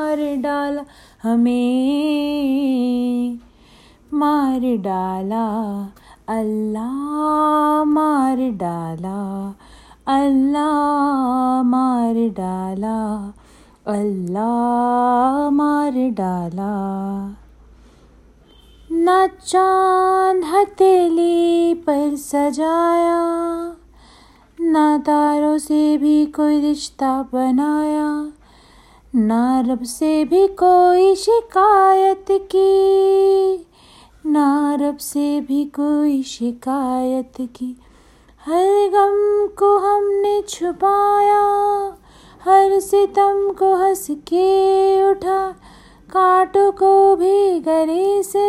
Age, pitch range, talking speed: 30-49, 265-385 Hz, 65 wpm